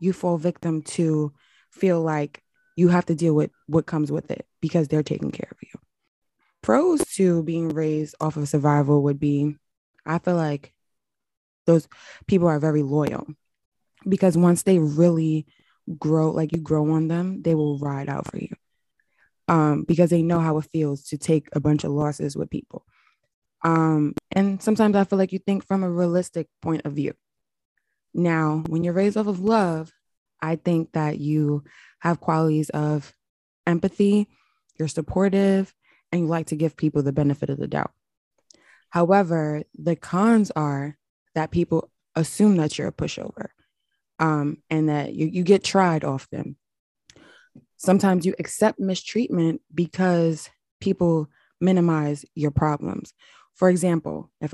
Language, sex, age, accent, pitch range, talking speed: English, female, 20-39, American, 150-185 Hz, 155 wpm